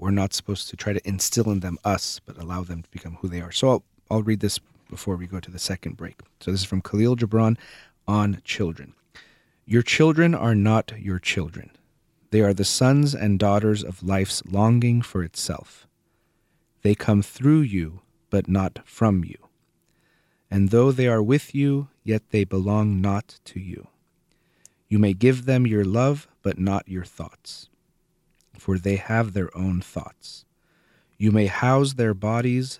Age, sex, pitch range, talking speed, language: 40-59, male, 95-115 Hz, 175 wpm, English